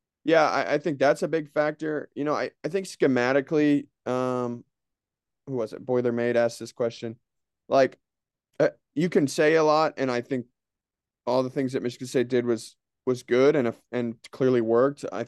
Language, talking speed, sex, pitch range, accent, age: English, 195 wpm, male, 110-125 Hz, American, 20-39